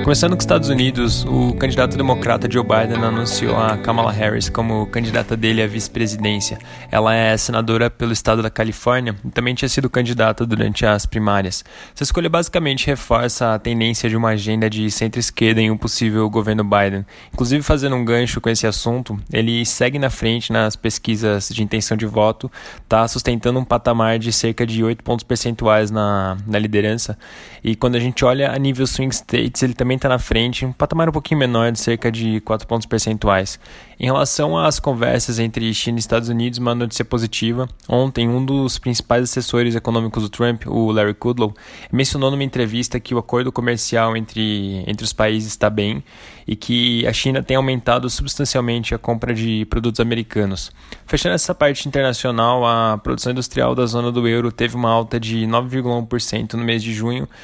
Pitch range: 110-125 Hz